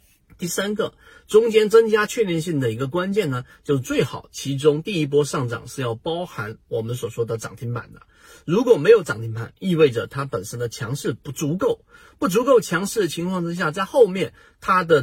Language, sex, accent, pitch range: Chinese, male, native, 120-185 Hz